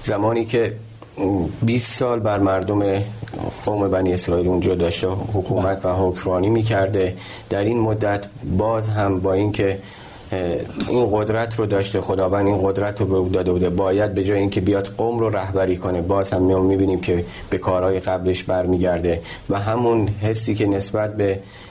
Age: 30-49